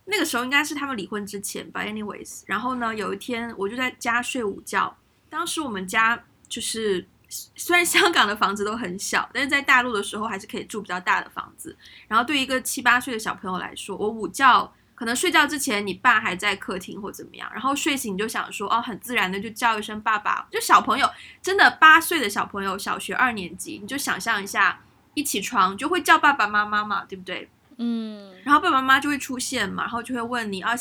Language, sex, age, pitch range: Chinese, female, 20-39, 205-280 Hz